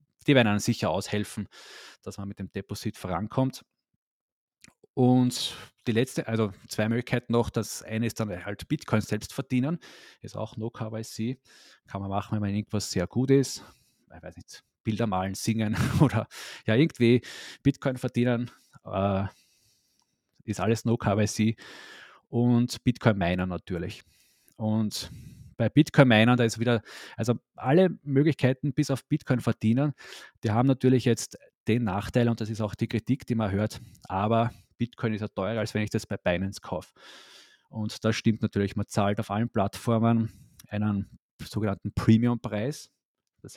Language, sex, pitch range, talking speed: German, male, 100-125 Hz, 150 wpm